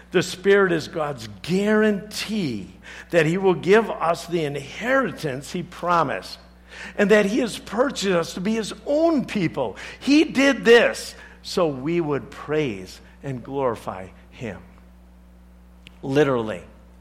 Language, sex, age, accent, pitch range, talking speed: English, male, 60-79, American, 110-180 Hz, 125 wpm